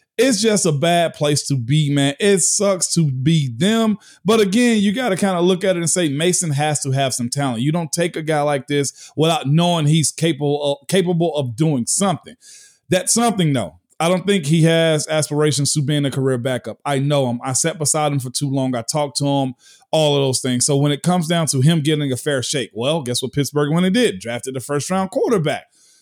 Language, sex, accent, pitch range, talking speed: English, male, American, 145-175 Hz, 235 wpm